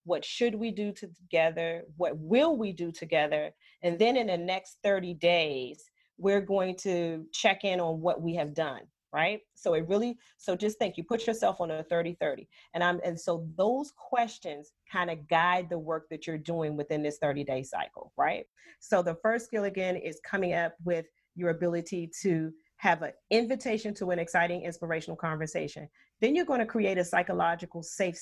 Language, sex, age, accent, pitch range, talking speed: English, female, 40-59, American, 165-210 Hz, 190 wpm